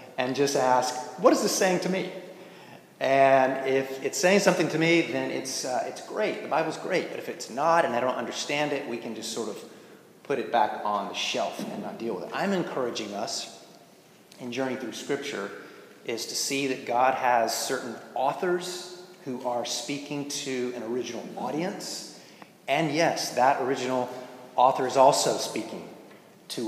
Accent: American